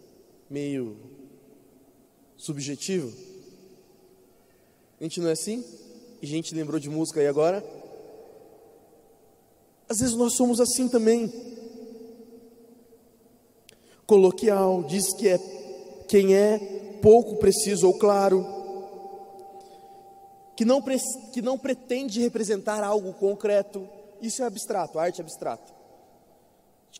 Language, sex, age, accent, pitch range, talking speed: Portuguese, male, 20-39, Brazilian, 195-255 Hz, 105 wpm